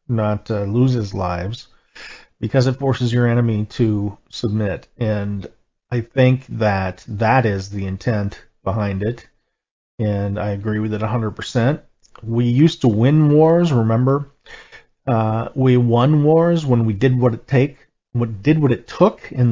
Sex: male